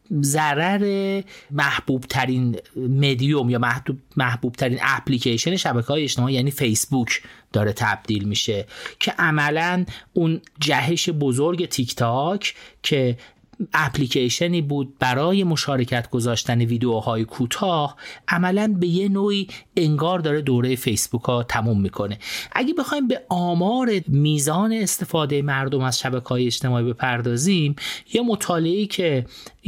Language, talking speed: Persian, 115 wpm